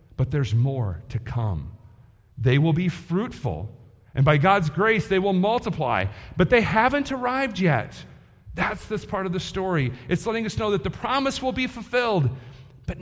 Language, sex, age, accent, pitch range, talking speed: English, male, 40-59, American, 120-185 Hz, 175 wpm